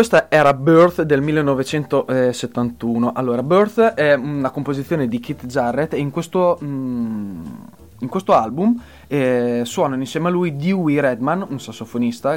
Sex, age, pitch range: male, 20-39, 120-175 Hz